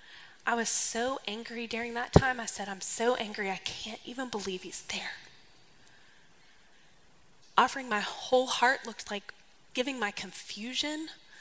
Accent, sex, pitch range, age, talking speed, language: American, female, 205-250 Hz, 10-29, 140 wpm, English